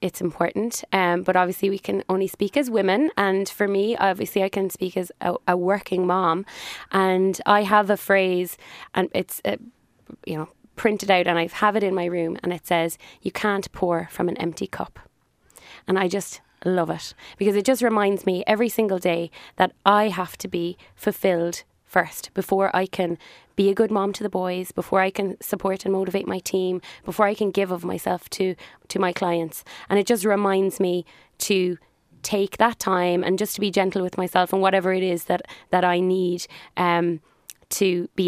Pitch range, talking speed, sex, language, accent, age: 180-200 Hz, 200 wpm, female, English, Irish, 20-39